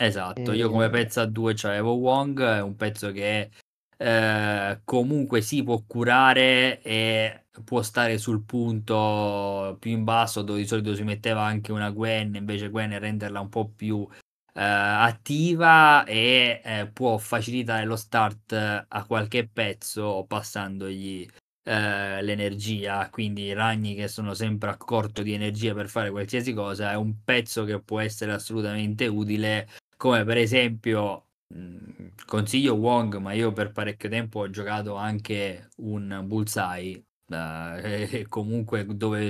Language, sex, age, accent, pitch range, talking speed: Italian, male, 20-39, native, 105-115 Hz, 145 wpm